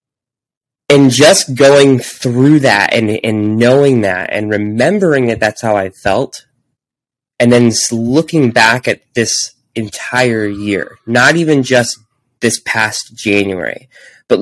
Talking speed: 130 wpm